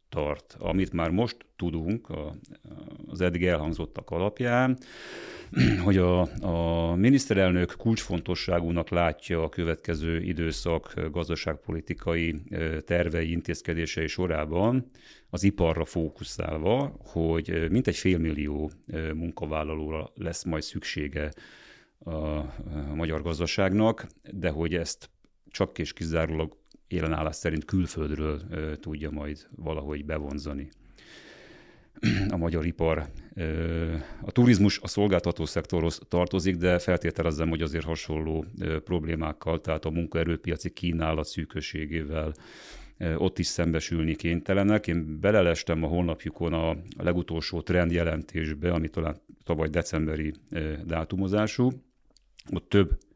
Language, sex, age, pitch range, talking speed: Hungarian, male, 40-59, 80-90 Hz, 100 wpm